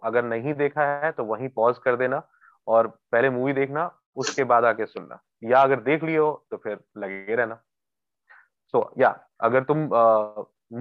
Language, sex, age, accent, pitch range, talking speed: Hindi, male, 20-39, native, 120-155 Hz, 160 wpm